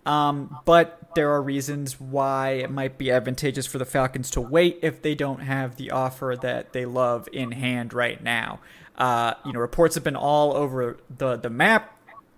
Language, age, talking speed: English, 30-49, 190 wpm